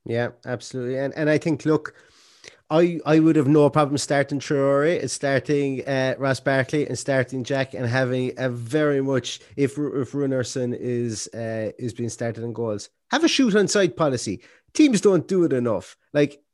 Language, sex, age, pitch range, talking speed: English, male, 30-49, 120-155 Hz, 180 wpm